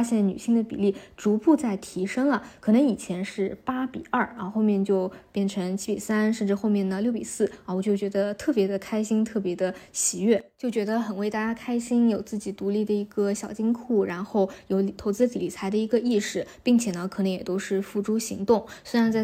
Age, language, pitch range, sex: 20-39, Chinese, 195-225 Hz, female